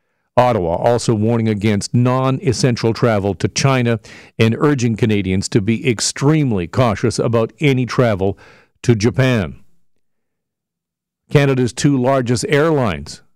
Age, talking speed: 50-69, 110 wpm